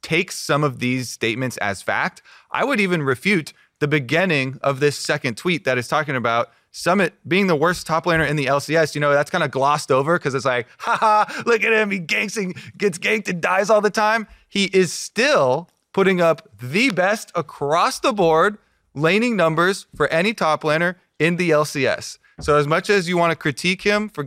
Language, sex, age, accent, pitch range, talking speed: English, male, 30-49, American, 145-190 Hz, 205 wpm